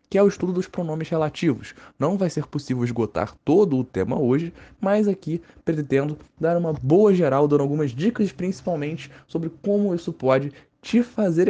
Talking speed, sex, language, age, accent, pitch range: 170 wpm, male, Portuguese, 20-39, Brazilian, 130-185 Hz